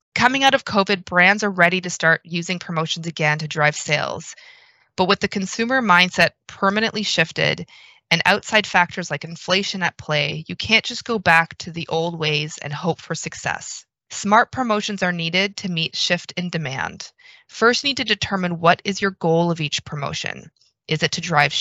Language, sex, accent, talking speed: English, female, American, 185 wpm